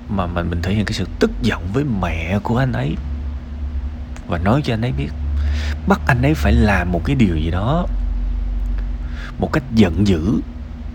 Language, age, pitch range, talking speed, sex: Vietnamese, 20-39, 80-110 Hz, 185 wpm, male